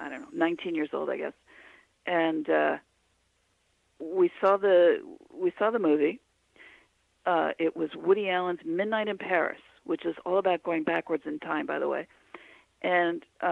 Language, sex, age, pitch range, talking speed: English, female, 50-69, 165-230 Hz, 165 wpm